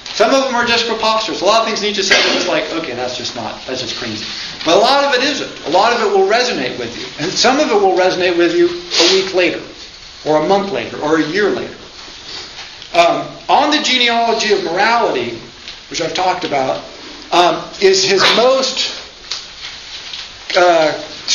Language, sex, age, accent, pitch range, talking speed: English, male, 50-69, American, 135-205 Hz, 200 wpm